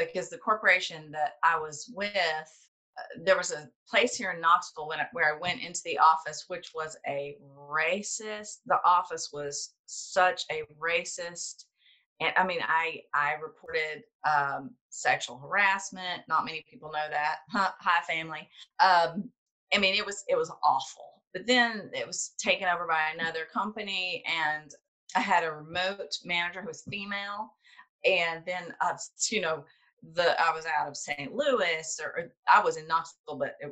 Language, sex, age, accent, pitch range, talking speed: English, female, 30-49, American, 155-210 Hz, 170 wpm